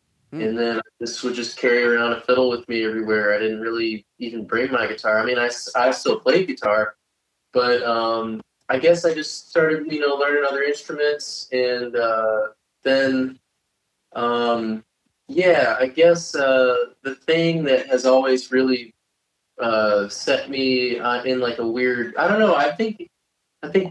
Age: 20-39